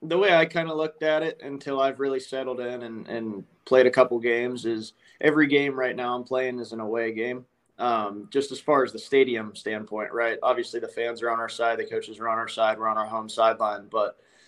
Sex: male